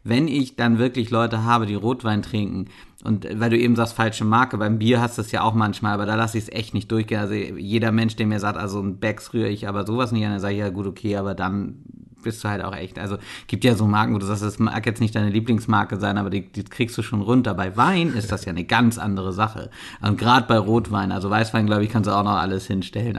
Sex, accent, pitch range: male, German, 105-125 Hz